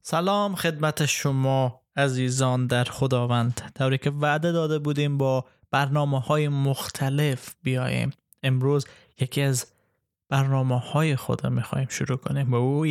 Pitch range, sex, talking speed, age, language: 120-145 Hz, male, 135 wpm, 20-39, Persian